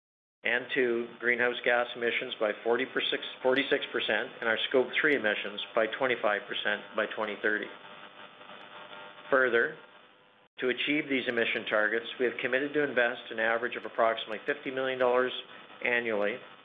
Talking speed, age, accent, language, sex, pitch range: 125 wpm, 50-69, American, English, male, 100-120 Hz